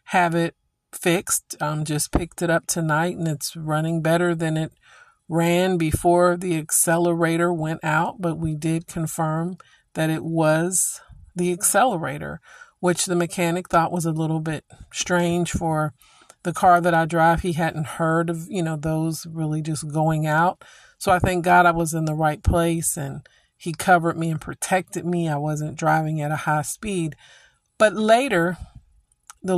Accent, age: American, 50-69